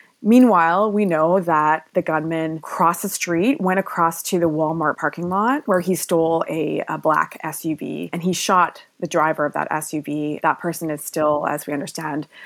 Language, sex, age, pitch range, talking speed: English, female, 20-39, 150-175 Hz, 185 wpm